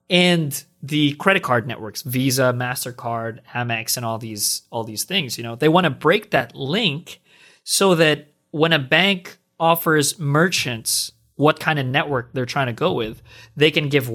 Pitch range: 115-150 Hz